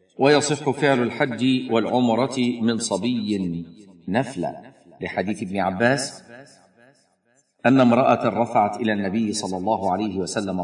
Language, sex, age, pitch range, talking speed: Arabic, male, 50-69, 95-135 Hz, 105 wpm